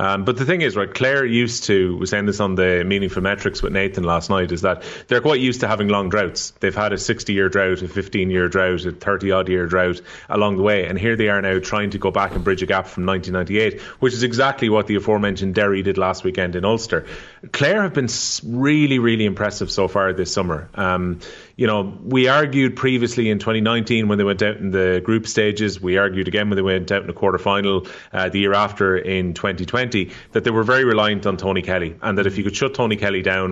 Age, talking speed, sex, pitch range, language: 30-49, 235 wpm, male, 95-115 Hz, English